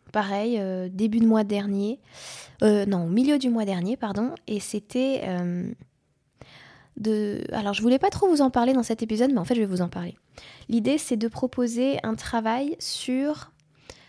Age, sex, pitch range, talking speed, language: 20-39, female, 205-245 Hz, 185 wpm, French